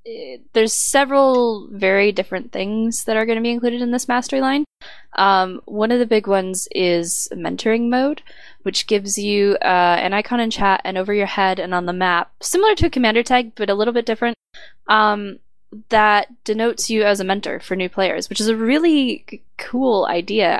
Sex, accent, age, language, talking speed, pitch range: female, American, 10-29, English, 195 wpm, 190-235 Hz